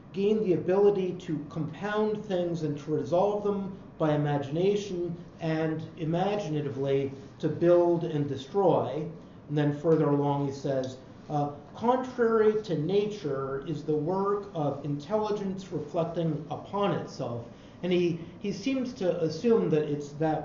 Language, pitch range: English, 150-190 Hz